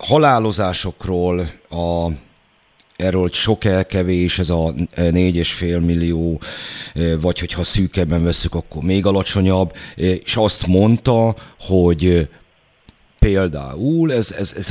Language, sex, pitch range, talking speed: Hungarian, male, 85-110 Hz, 105 wpm